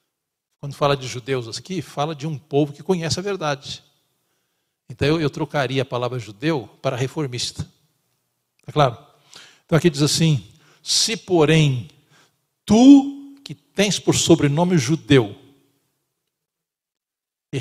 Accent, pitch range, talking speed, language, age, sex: Brazilian, 130-170 Hz, 125 wpm, Portuguese, 60-79, male